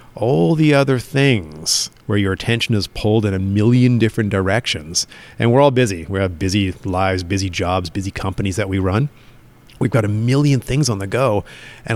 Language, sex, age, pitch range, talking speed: English, male, 30-49, 100-120 Hz, 190 wpm